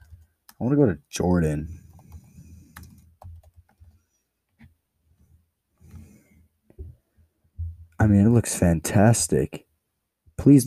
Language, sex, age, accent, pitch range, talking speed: English, male, 20-39, American, 80-95 Hz, 65 wpm